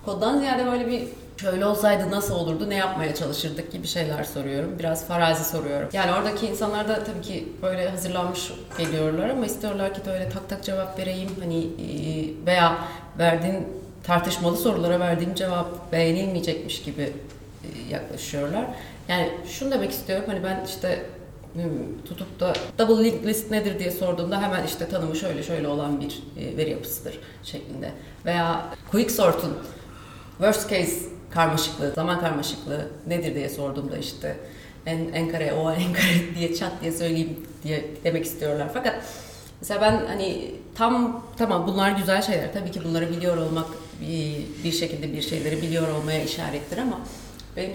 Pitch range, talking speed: 160-200 Hz, 150 wpm